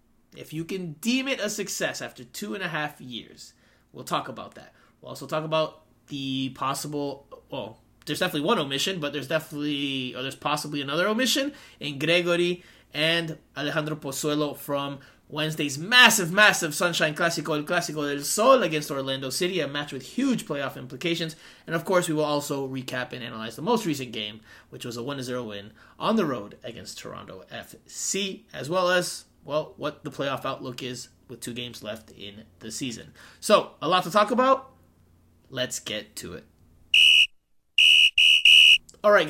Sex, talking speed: male, 170 wpm